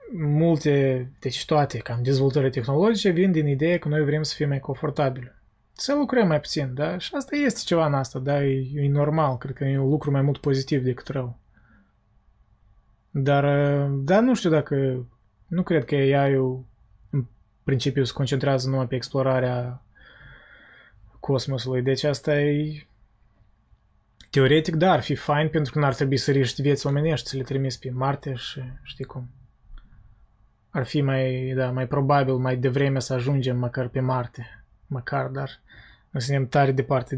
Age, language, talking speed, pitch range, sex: 20-39, Romanian, 165 wpm, 130-145 Hz, male